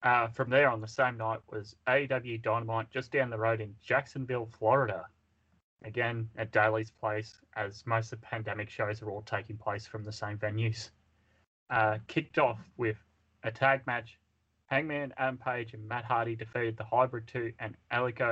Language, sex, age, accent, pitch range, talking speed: English, male, 20-39, Australian, 110-125 Hz, 175 wpm